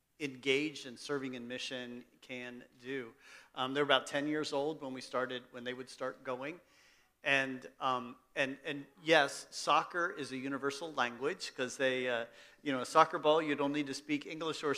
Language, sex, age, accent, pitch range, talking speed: English, male, 40-59, American, 120-140 Hz, 185 wpm